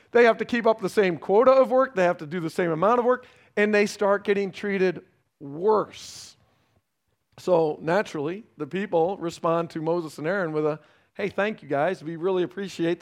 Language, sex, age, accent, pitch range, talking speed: English, male, 40-59, American, 160-215 Hz, 200 wpm